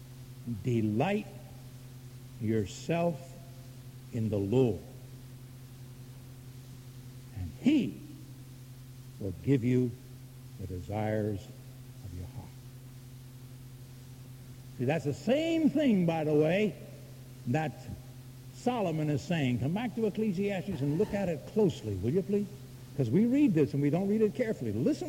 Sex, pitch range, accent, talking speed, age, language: male, 125-170 Hz, American, 120 wpm, 60-79, English